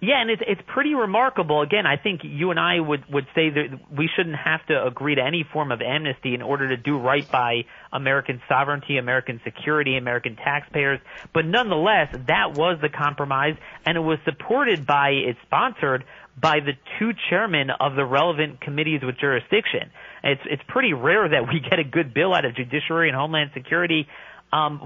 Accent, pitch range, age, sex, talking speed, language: American, 135-170 Hz, 40-59, male, 190 wpm, English